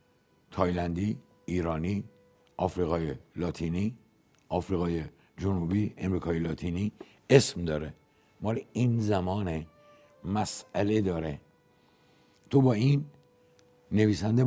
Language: Persian